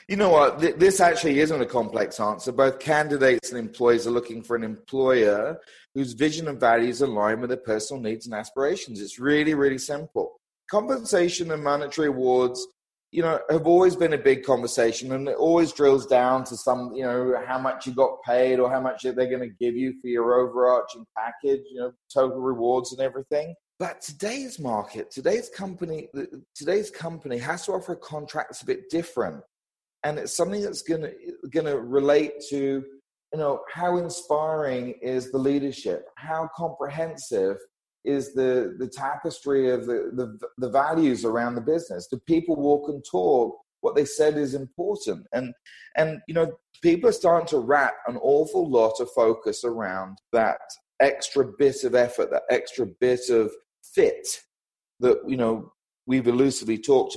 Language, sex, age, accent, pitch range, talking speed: English, male, 30-49, British, 125-175 Hz, 170 wpm